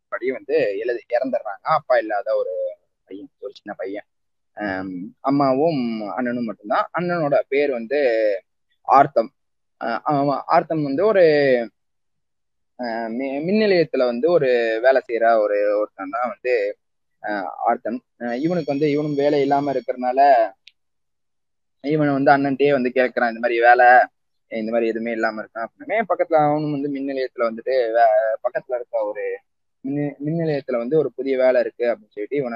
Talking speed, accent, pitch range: 130 wpm, native, 125-190 Hz